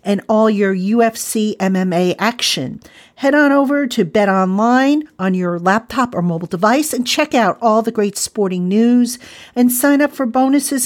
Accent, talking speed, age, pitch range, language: American, 170 wpm, 50-69, 190-250 Hz, English